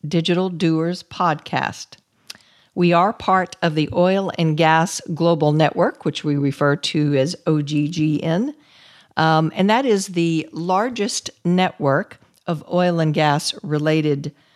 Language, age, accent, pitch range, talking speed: English, 50-69, American, 155-200 Hz, 130 wpm